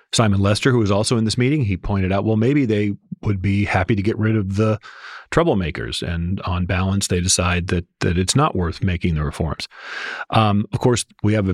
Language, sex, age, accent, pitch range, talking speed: English, male, 40-59, American, 90-105 Hz, 220 wpm